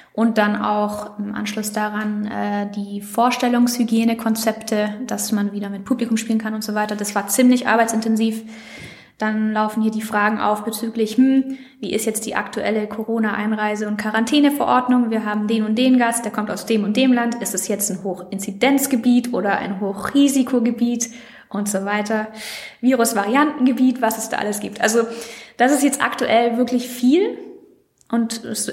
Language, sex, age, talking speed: German, female, 20-39, 165 wpm